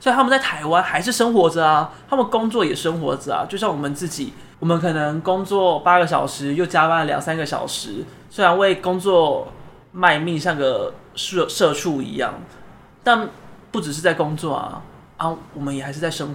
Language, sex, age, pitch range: Chinese, male, 20-39, 150-190 Hz